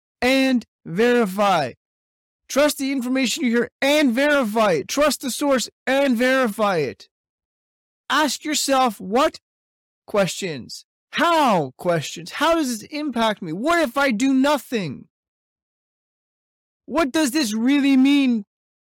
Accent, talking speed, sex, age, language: American, 115 wpm, male, 30-49, English